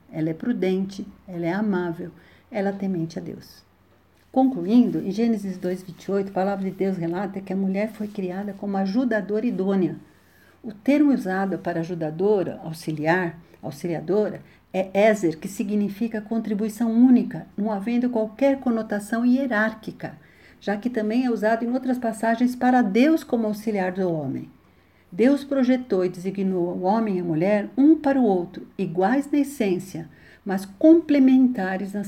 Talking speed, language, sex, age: 150 wpm, Portuguese, female, 60-79